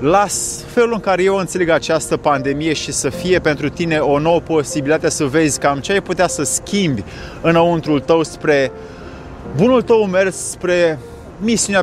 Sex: male